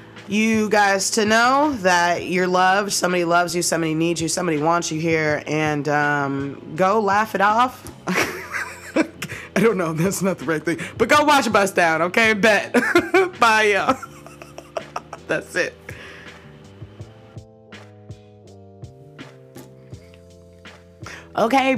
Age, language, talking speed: 20-39, English, 125 wpm